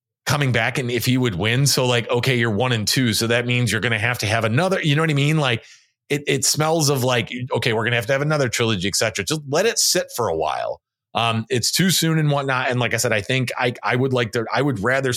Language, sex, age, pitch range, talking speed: English, male, 30-49, 110-145 Hz, 275 wpm